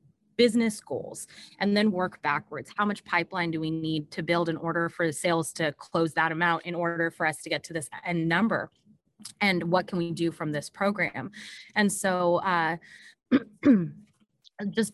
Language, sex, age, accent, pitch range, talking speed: English, female, 20-39, American, 160-185 Hz, 180 wpm